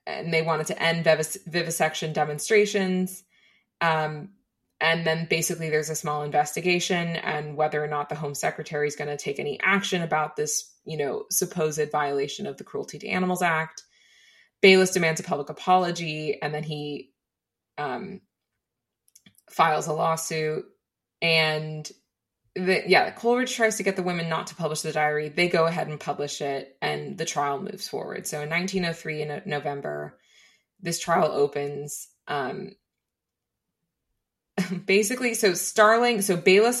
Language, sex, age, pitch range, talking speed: English, female, 20-39, 150-195 Hz, 150 wpm